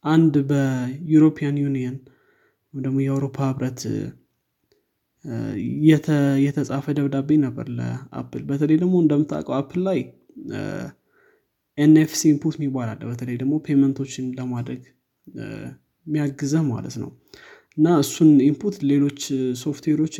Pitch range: 130-155 Hz